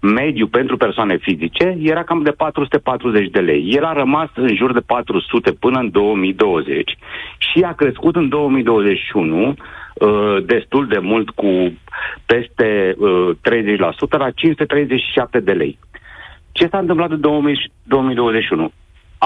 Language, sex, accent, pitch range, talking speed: Romanian, male, native, 110-150 Hz, 130 wpm